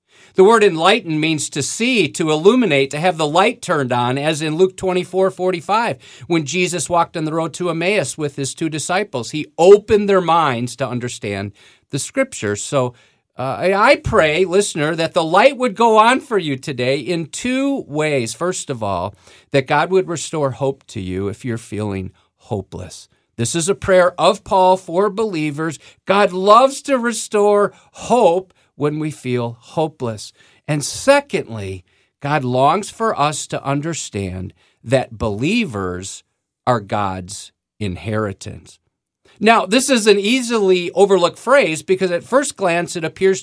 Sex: male